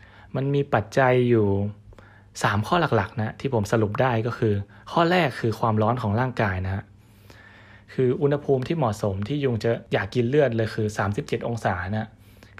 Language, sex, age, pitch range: Thai, male, 20-39, 105-135 Hz